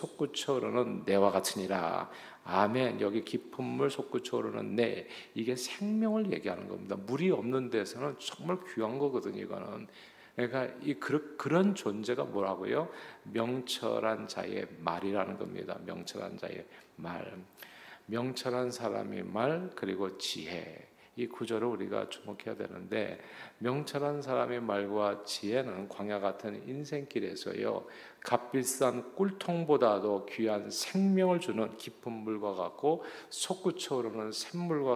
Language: Korean